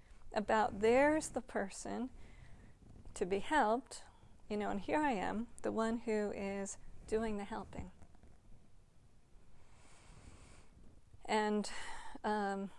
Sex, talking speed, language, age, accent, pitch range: female, 100 wpm, English, 40-59, American, 195-240 Hz